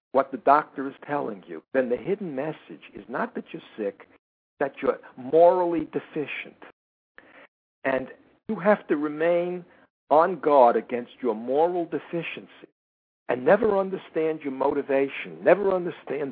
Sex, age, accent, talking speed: male, 60-79, American, 135 wpm